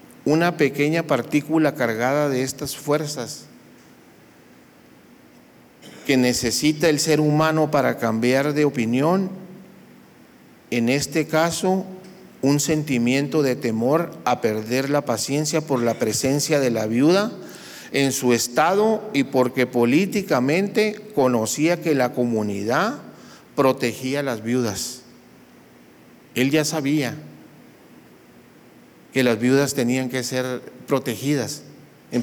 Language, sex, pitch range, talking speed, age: Spanish, male, 125-160 Hz, 110 wpm, 50-69